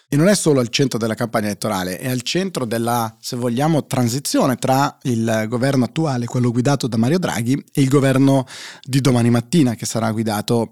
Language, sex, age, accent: Italian, male, 30-49, native